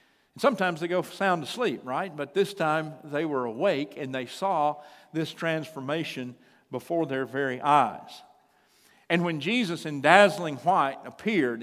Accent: American